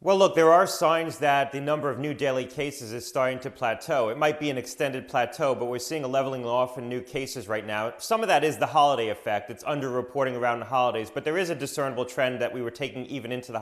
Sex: male